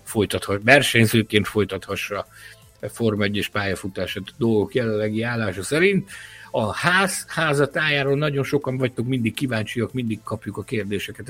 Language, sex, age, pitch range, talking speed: Hungarian, male, 50-69, 105-130 Hz, 125 wpm